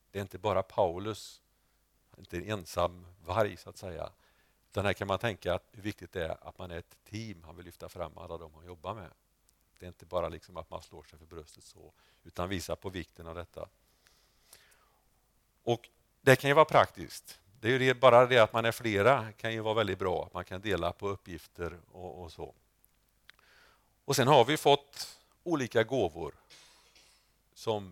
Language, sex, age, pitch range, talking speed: Swedish, male, 50-69, 85-105 Hz, 195 wpm